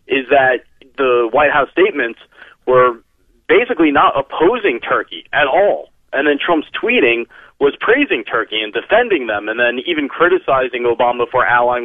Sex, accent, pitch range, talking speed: male, American, 120-160 Hz, 150 wpm